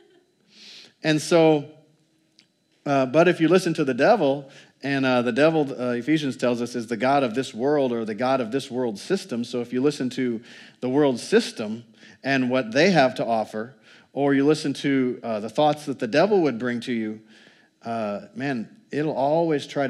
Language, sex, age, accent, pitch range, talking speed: English, male, 40-59, American, 120-150 Hz, 195 wpm